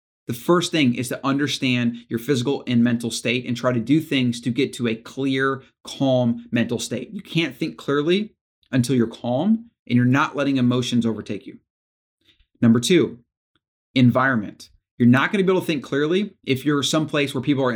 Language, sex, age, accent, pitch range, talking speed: English, male, 30-49, American, 120-145 Hz, 190 wpm